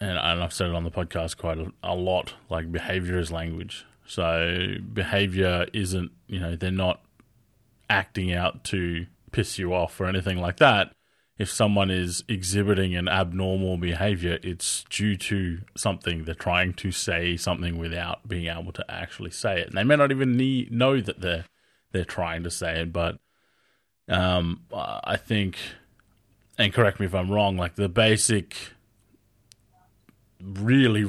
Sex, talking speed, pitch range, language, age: male, 160 wpm, 90-105 Hz, English, 20-39